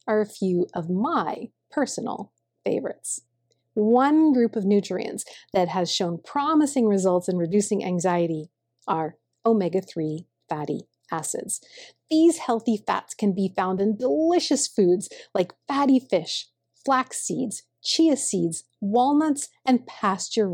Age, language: 40-59, English